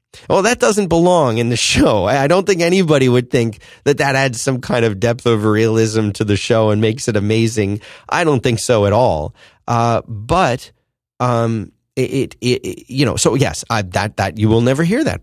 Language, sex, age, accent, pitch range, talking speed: English, male, 30-49, American, 100-125 Hz, 210 wpm